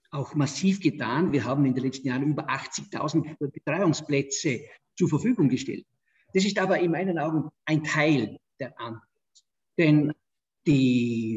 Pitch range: 130-165 Hz